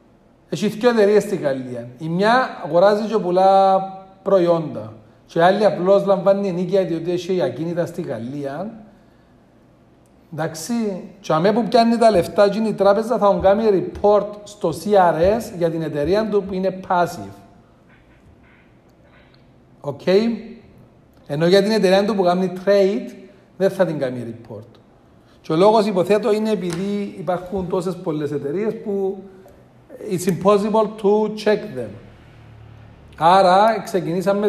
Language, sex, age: Greek, male, 40-59